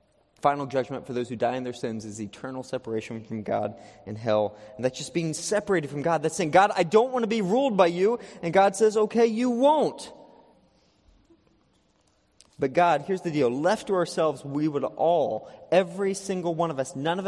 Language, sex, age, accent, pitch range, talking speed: English, male, 30-49, American, 150-200 Hz, 200 wpm